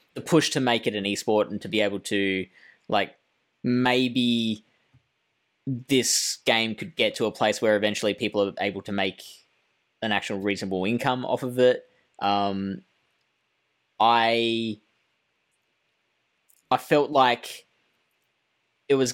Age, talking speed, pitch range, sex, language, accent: 10-29, 130 wpm, 95-115 Hz, male, English, Australian